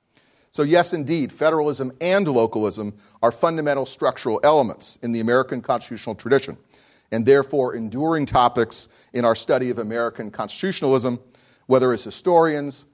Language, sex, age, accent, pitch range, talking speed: English, male, 40-59, American, 115-150 Hz, 130 wpm